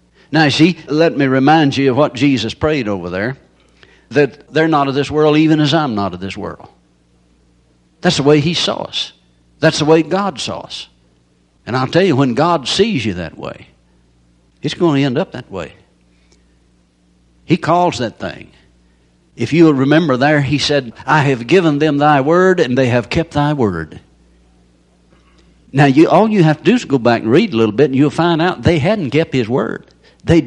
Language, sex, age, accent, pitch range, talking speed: English, male, 60-79, American, 105-170 Hz, 200 wpm